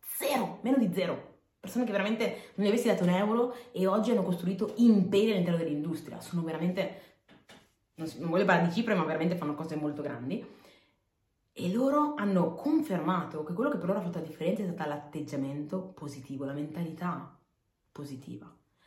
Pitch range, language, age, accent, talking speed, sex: 155-200 Hz, Italian, 30-49, native, 170 wpm, female